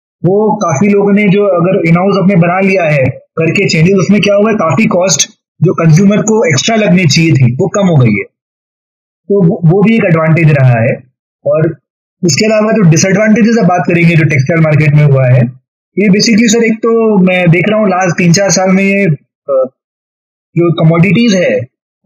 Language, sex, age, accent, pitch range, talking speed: Hindi, male, 20-39, native, 165-205 Hz, 200 wpm